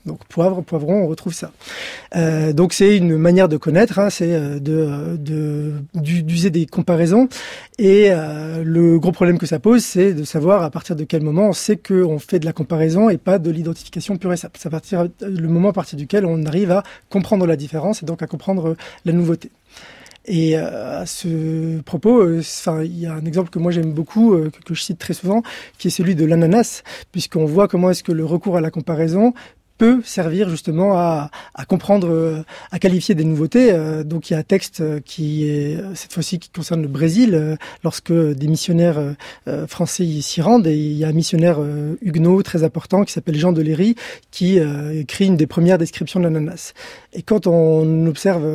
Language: French